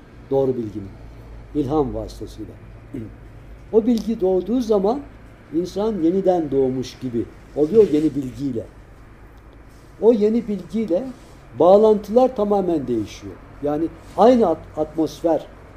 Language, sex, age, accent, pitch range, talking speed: Turkish, male, 60-79, native, 110-185 Hz, 90 wpm